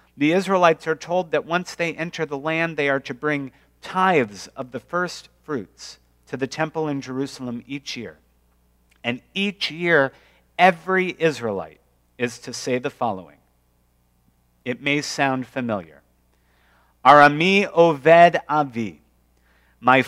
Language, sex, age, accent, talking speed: English, male, 50-69, American, 130 wpm